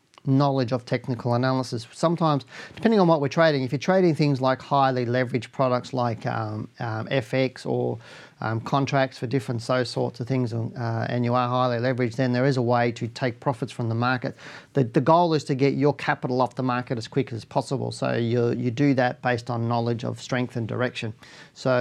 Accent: Australian